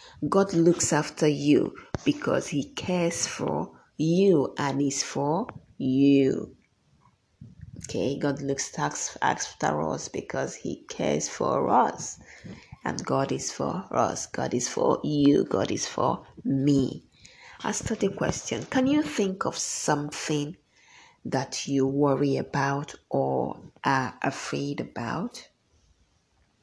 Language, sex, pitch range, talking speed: English, female, 135-165 Hz, 120 wpm